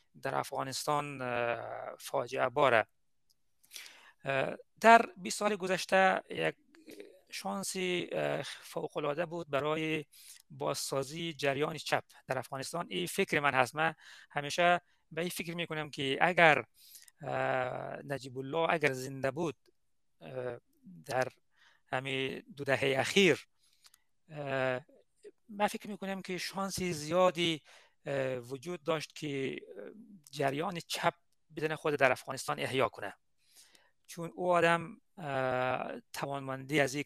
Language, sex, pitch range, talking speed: Persian, male, 135-180 Hz, 100 wpm